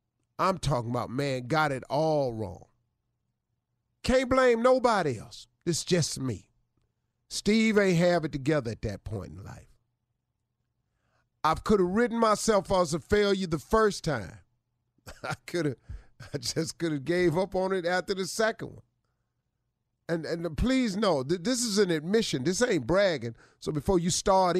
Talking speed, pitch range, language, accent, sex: 160 wpm, 120-200 Hz, English, American, male